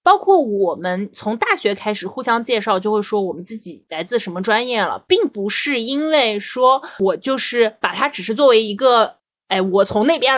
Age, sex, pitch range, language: 20-39, female, 200-265 Hz, Chinese